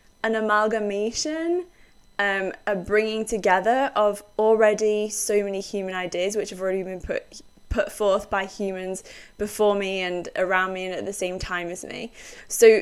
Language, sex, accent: English, female, British